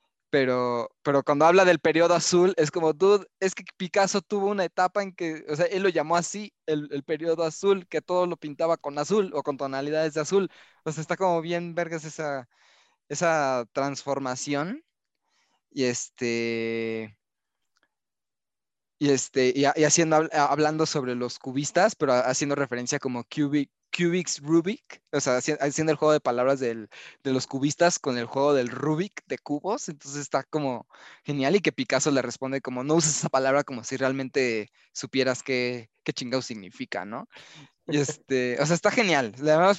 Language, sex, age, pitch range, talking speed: Spanish, male, 20-39, 135-175 Hz, 170 wpm